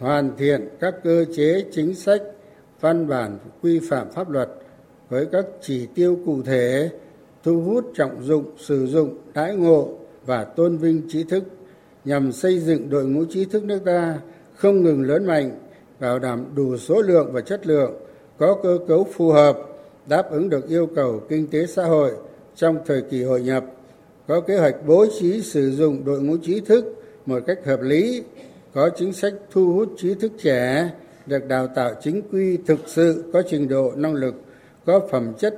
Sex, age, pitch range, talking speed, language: male, 60-79, 140-185 Hz, 185 wpm, Vietnamese